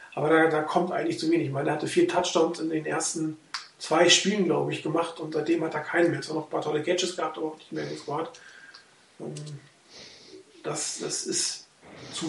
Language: German